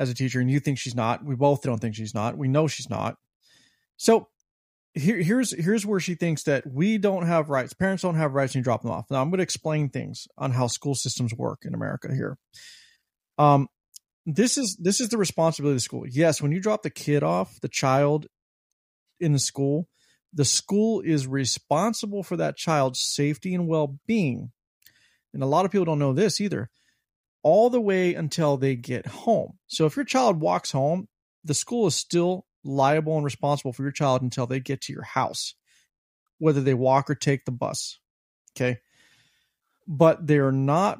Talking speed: 195 wpm